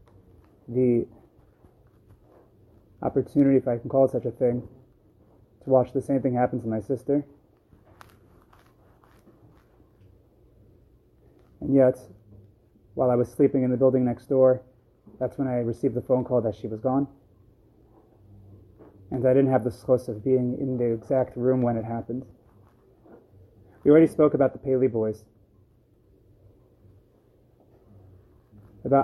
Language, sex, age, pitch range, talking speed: English, male, 30-49, 105-135 Hz, 130 wpm